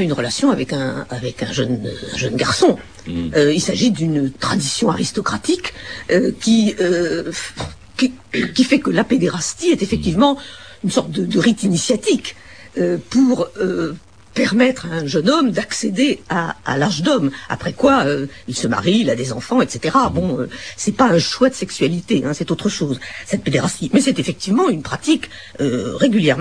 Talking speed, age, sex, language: 175 wpm, 50-69, female, French